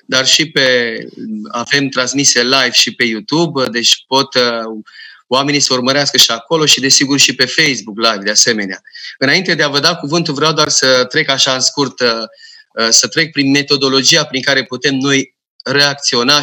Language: Romanian